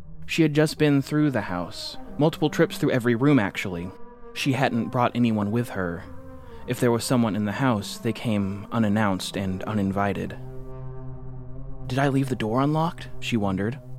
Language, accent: English, American